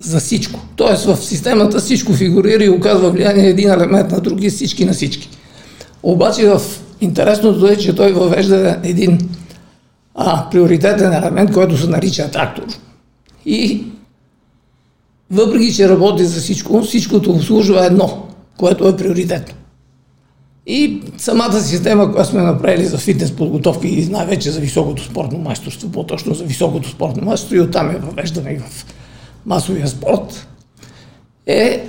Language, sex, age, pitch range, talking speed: Bulgarian, male, 50-69, 170-205 Hz, 135 wpm